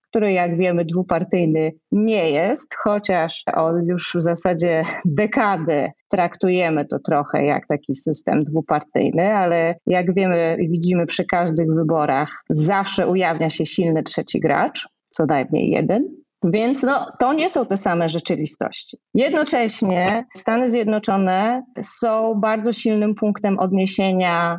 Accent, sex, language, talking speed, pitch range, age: native, female, Polish, 125 wpm, 165-210 Hz, 30-49